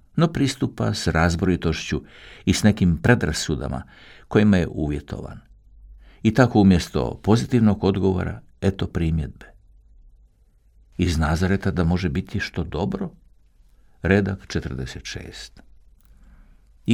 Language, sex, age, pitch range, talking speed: Croatian, male, 60-79, 75-100 Hz, 95 wpm